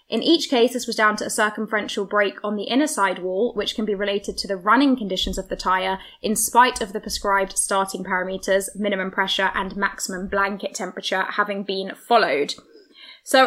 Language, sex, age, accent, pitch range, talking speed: English, female, 10-29, British, 195-235 Hz, 190 wpm